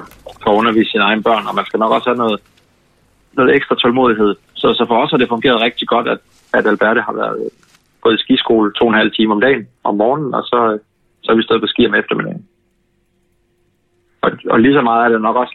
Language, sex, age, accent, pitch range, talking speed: Danish, male, 30-49, native, 105-120 Hz, 230 wpm